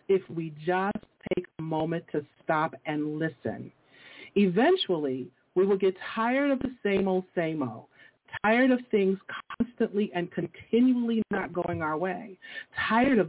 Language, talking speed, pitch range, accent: English, 150 wpm, 160-215 Hz, American